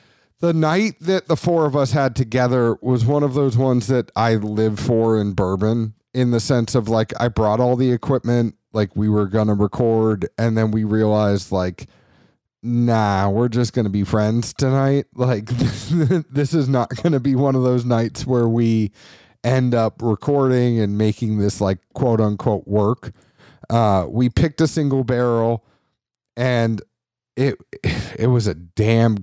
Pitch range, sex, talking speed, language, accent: 110-135 Hz, male, 170 wpm, English, American